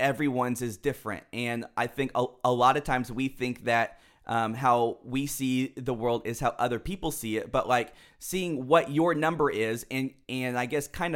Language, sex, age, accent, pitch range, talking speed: English, male, 20-39, American, 125-150 Hz, 205 wpm